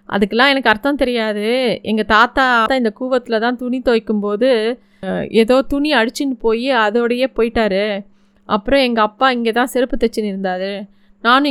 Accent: native